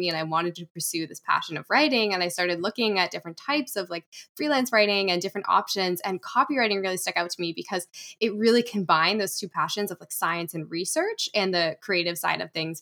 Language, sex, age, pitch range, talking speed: English, female, 10-29, 175-220 Hz, 225 wpm